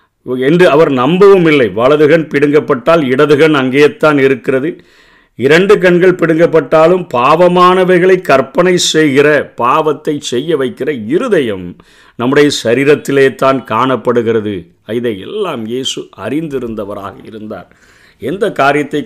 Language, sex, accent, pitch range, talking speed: Tamil, male, native, 125-165 Hz, 100 wpm